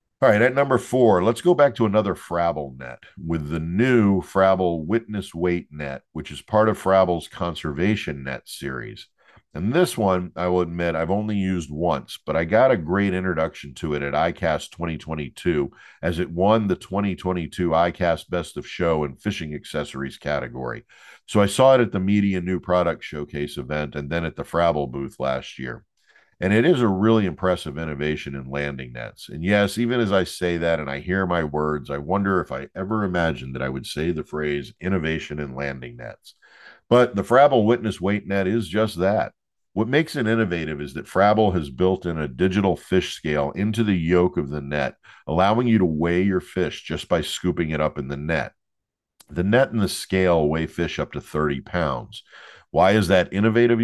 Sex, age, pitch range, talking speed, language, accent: male, 50-69, 75-105 Hz, 195 wpm, English, American